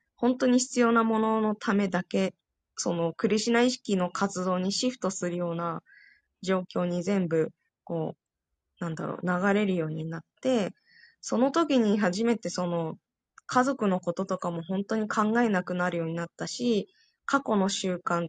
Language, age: Japanese, 20-39